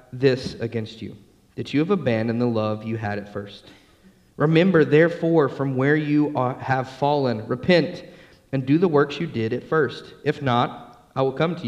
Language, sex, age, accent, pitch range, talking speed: English, male, 30-49, American, 115-155 Hz, 185 wpm